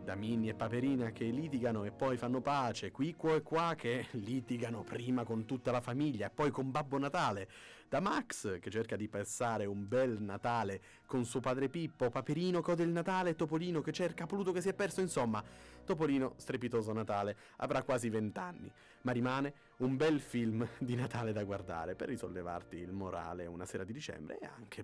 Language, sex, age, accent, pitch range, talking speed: Italian, male, 30-49, native, 100-140 Hz, 185 wpm